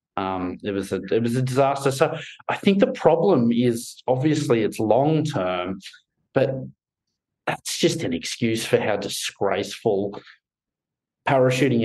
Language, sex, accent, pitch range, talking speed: English, male, Australian, 105-140 Hz, 120 wpm